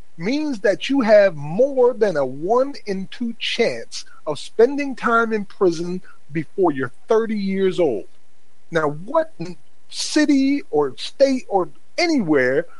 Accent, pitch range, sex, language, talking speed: American, 160-245 Hz, male, English, 130 wpm